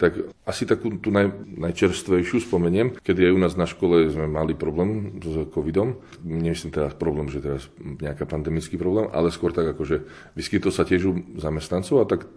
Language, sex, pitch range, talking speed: Slovak, male, 80-100 Hz, 185 wpm